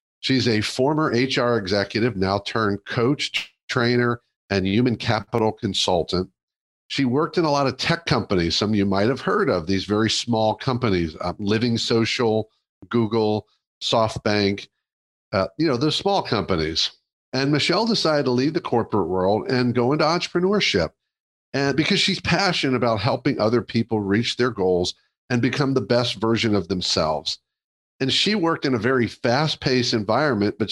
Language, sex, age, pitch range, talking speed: English, male, 50-69, 110-140 Hz, 160 wpm